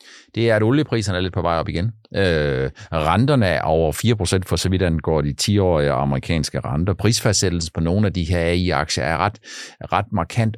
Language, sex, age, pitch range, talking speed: Danish, male, 50-69, 95-140 Hz, 200 wpm